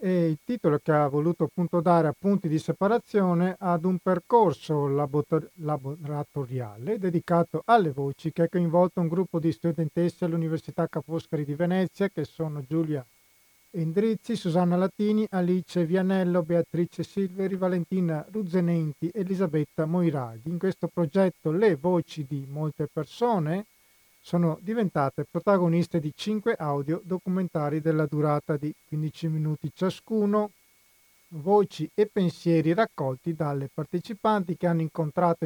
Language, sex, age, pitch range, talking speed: Italian, male, 40-59, 155-185 Hz, 125 wpm